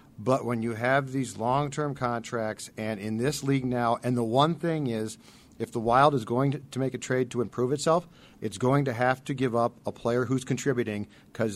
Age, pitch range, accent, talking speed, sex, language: 50-69, 115-140 Hz, American, 220 wpm, male, English